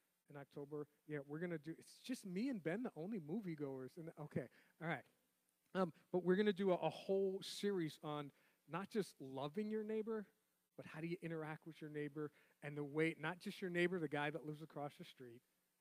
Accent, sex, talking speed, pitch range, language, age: American, male, 210 wpm, 140-185 Hz, English, 40-59